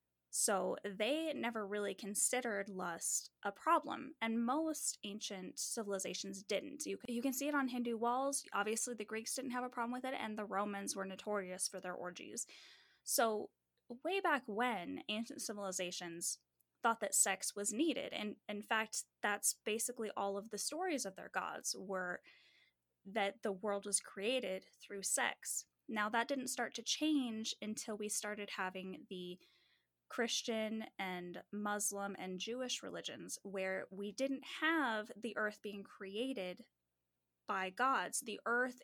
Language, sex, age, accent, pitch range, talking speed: English, female, 10-29, American, 195-245 Hz, 150 wpm